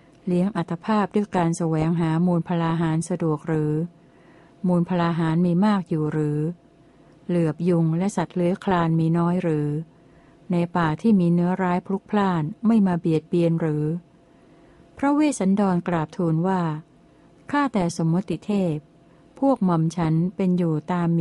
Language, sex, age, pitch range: Thai, female, 60-79, 165-185 Hz